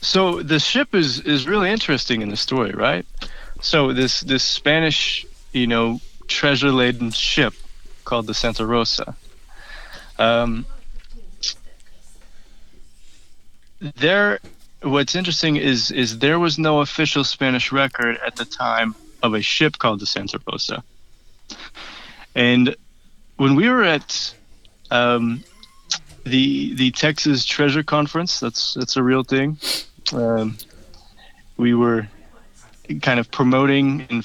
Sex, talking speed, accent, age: male, 120 wpm, American, 30-49